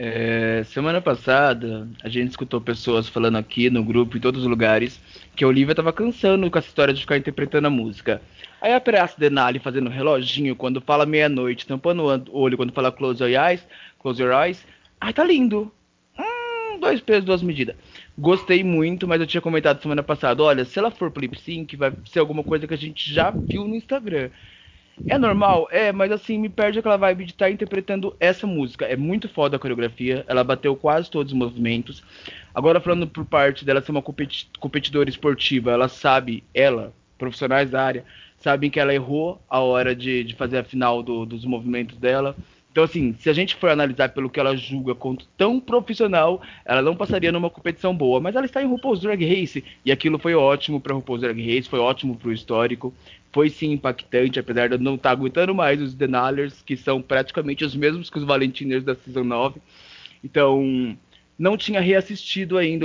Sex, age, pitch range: male, 20-39, 125-170 Hz